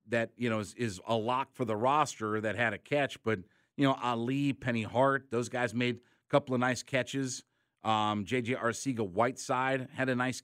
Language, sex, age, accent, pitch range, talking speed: English, male, 50-69, American, 110-130 Hz, 195 wpm